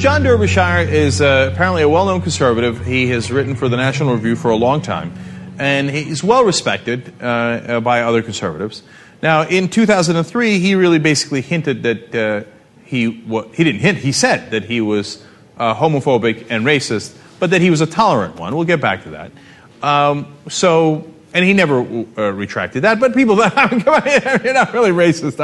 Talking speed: 185 wpm